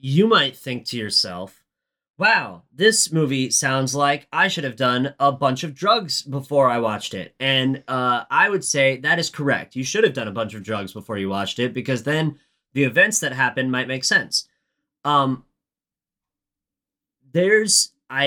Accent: American